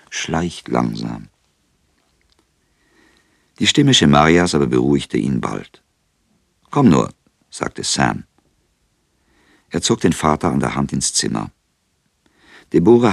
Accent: German